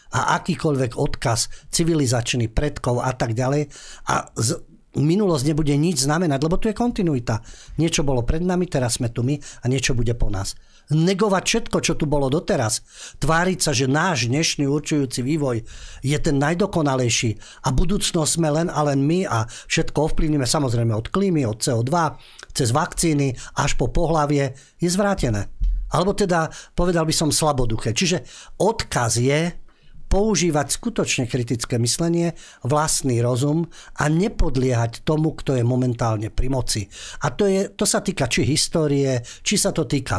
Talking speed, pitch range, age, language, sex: 155 wpm, 125-170 Hz, 50-69, Slovak, male